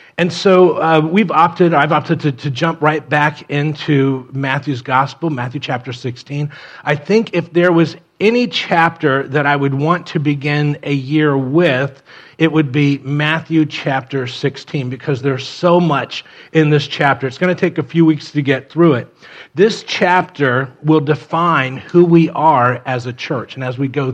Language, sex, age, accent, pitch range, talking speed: English, male, 40-59, American, 135-155 Hz, 180 wpm